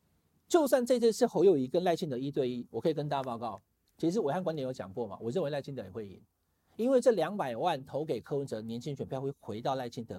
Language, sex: Chinese, male